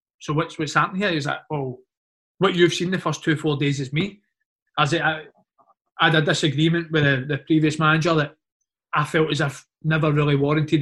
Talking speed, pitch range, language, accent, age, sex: 215 wpm, 145-170 Hz, English, British, 20-39, male